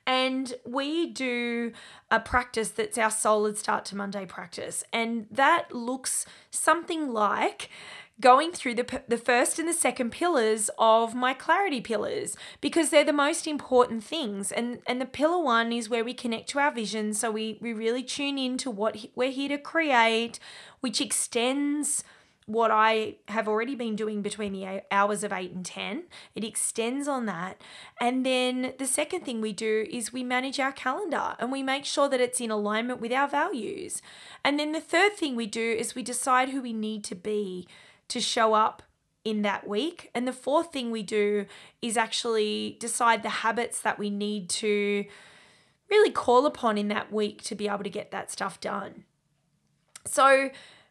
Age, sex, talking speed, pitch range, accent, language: 20-39, female, 180 wpm, 220-270 Hz, Australian, English